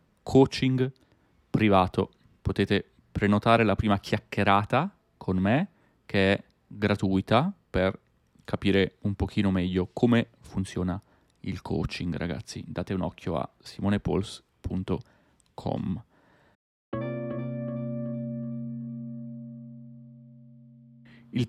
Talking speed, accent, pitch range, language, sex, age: 80 wpm, native, 95-120 Hz, Italian, male, 30-49